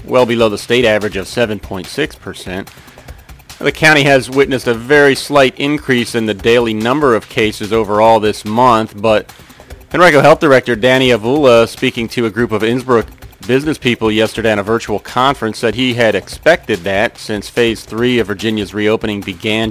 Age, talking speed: 40-59, 165 wpm